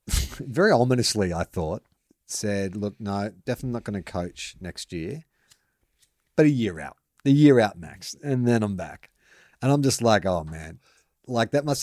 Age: 30-49